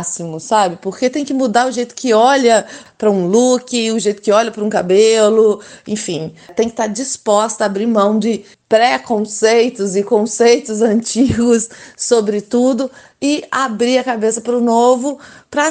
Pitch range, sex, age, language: 200-245 Hz, female, 20-39, Portuguese